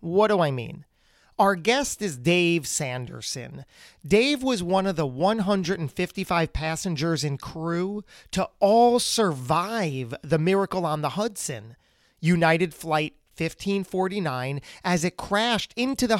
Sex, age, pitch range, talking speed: male, 40-59, 150-205 Hz, 125 wpm